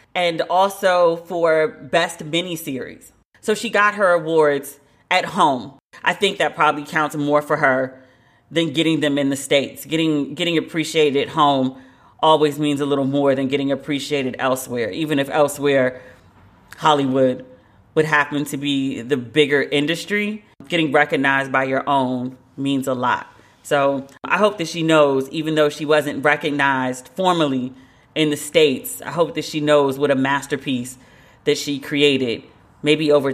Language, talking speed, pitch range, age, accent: English, 155 wpm, 135-170 Hz, 30-49, American